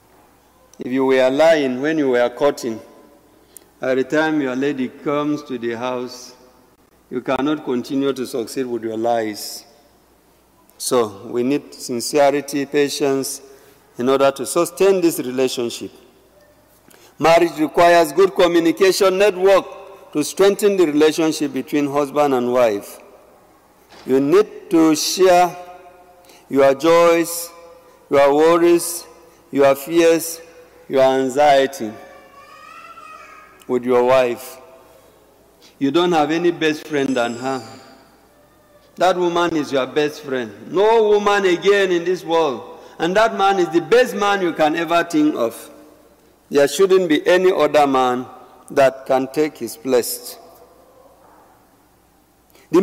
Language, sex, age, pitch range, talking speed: English, male, 50-69, 130-175 Hz, 125 wpm